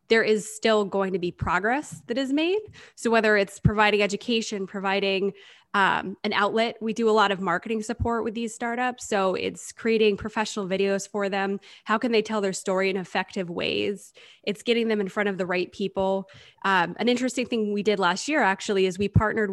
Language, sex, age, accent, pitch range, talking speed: English, female, 20-39, American, 190-220 Hz, 205 wpm